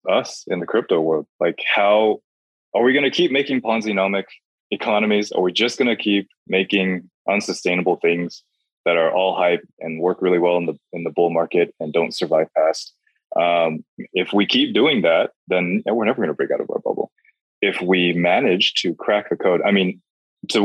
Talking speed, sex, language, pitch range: 200 wpm, male, English, 85-115 Hz